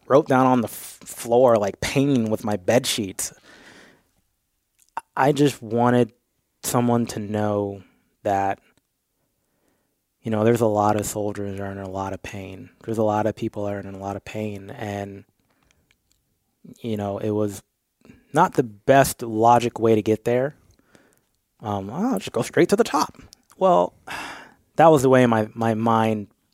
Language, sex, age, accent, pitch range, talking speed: English, male, 20-39, American, 105-125 Hz, 165 wpm